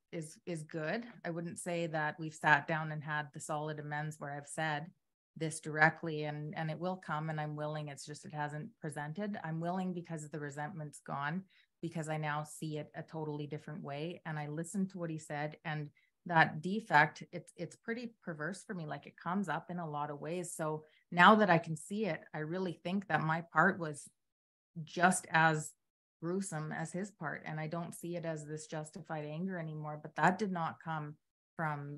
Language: English